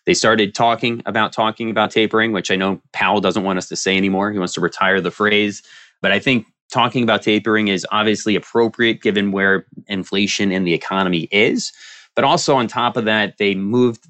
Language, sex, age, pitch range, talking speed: English, male, 30-49, 95-120 Hz, 200 wpm